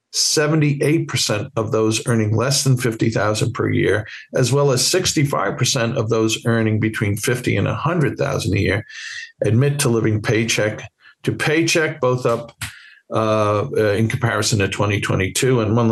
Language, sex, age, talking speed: English, male, 50-69, 140 wpm